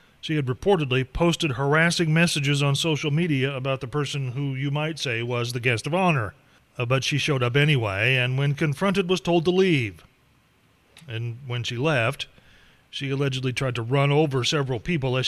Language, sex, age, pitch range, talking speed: English, male, 30-49, 130-165 Hz, 185 wpm